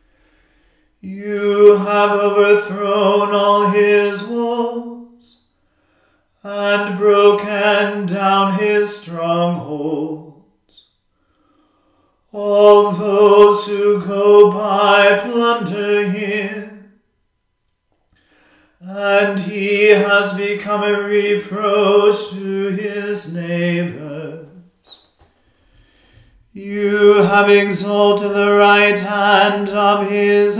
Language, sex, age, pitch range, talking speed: English, male, 40-59, 200-205 Hz, 70 wpm